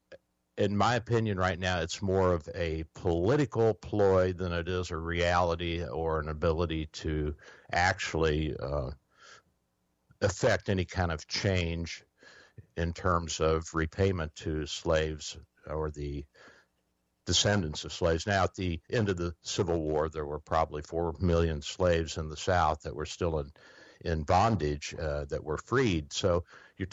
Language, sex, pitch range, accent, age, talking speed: English, male, 80-95 Hz, American, 60-79, 150 wpm